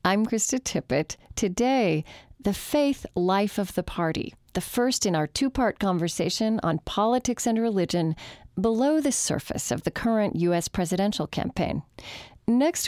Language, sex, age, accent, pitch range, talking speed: English, female, 40-59, American, 170-225 Hz, 140 wpm